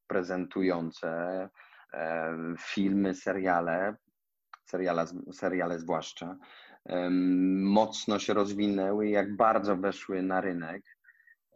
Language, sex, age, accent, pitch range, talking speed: Polish, male, 30-49, native, 90-110 Hz, 75 wpm